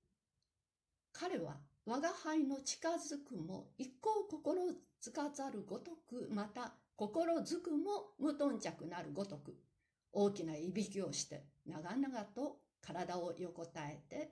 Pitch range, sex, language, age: 185-290 Hz, female, Japanese, 60-79